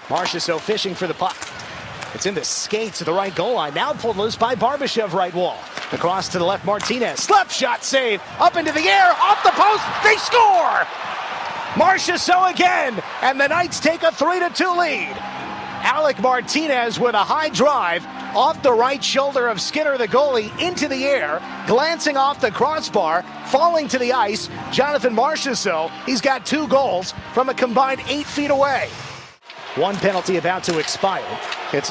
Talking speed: 170 wpm